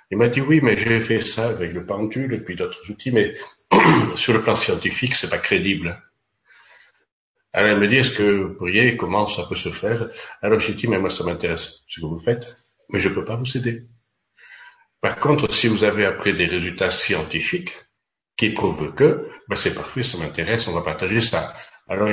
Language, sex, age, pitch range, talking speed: French, male, 60-79, 95-125 Hz, 220 wpm